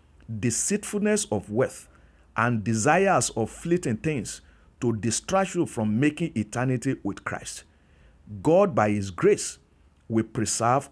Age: 50-69